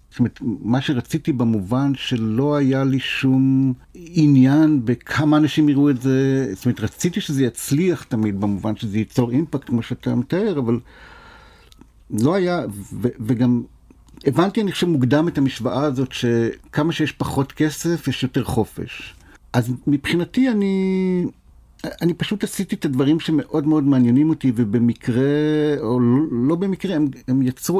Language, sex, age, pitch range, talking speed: Hebrew, male, 60-79, 120-150 Hz, 140 wpm